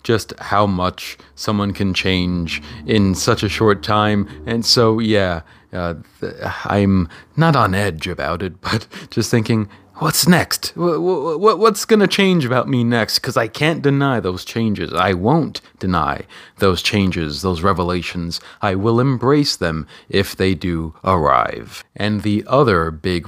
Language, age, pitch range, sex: English, 30-49, 90-115 Hz, male